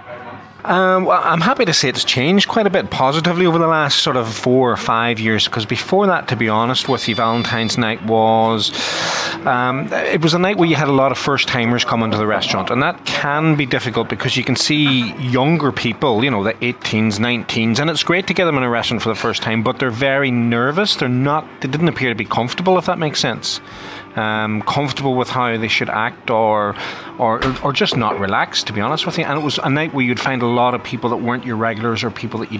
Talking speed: 240 wpm